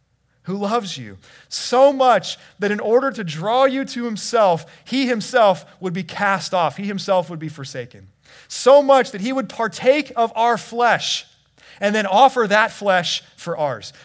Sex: male